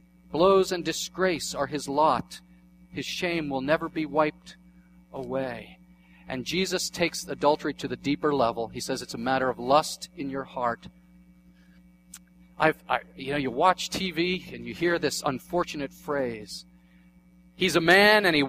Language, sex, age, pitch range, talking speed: English, male, 40-59, 150-180 Hz, 160 wpm